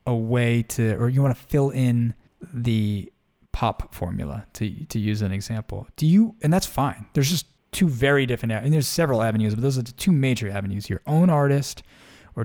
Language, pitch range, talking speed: English, 110-140 Hz, 200 wpm